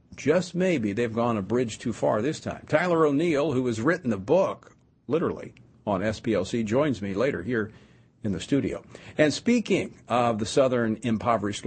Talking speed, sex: 170 wpm, male